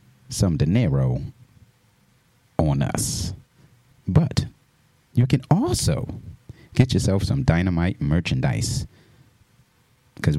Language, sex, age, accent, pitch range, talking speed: English, male, 30-49, American, 100-130 Hz, 80 wpm